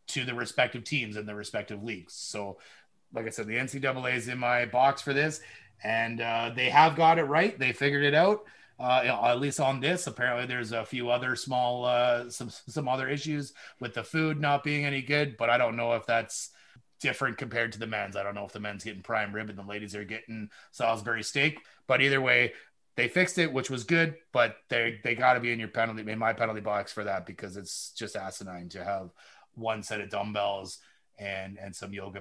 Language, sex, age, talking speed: English, male, 30-49, 220 wpm